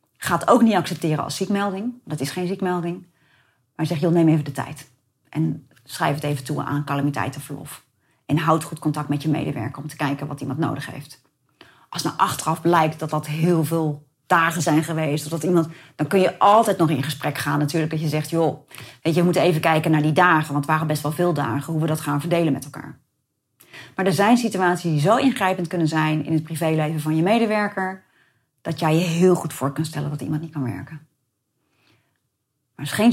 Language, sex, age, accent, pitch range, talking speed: Dutch, female, 30-49, Dutch, 145-180 Hz, 220 wpm